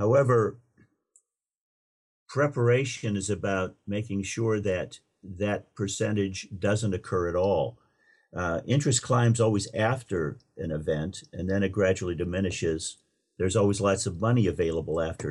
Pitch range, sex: 90-110 Hz, male